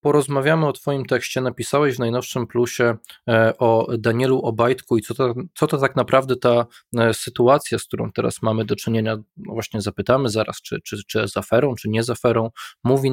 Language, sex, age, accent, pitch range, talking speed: Polish, male, 20-39, native, 110-140 Hz, 175 wpm